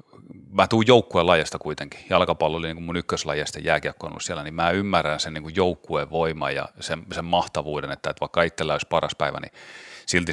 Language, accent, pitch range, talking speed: Finnish, native, 80-95 Hz, 205 wpm